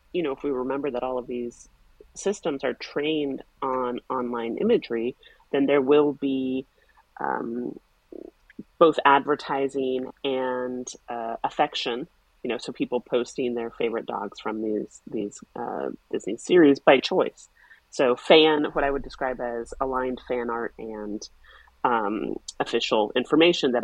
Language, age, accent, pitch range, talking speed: English, 30-49, American, 120-145 Hz, 140 wpm